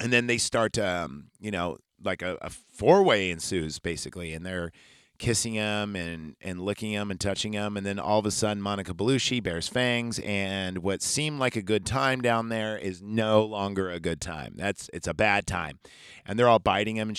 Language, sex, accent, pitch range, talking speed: English, male, American, 95-115 Hz, 215 wpm